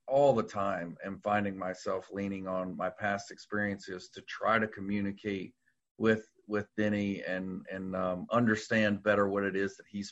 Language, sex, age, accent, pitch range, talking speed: English, male, 40-59, American, 100-115 Hz, 165 wpm